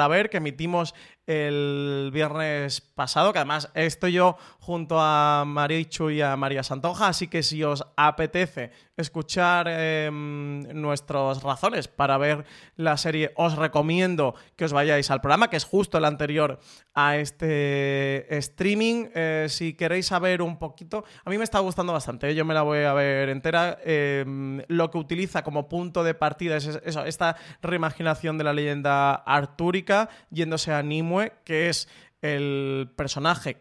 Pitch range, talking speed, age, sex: 135-160 Hz, 155 wpm, 20-39, male